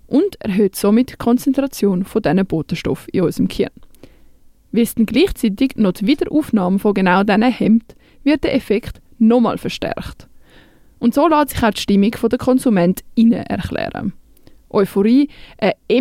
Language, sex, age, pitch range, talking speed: German, female, 20-39, 200-255 Hz, 140 wpm